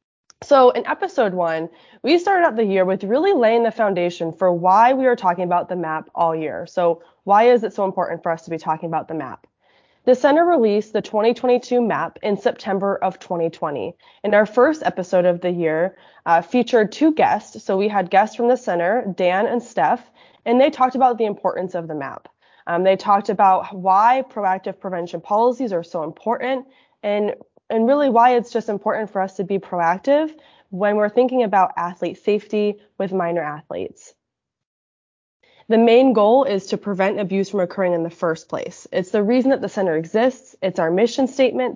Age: 20-39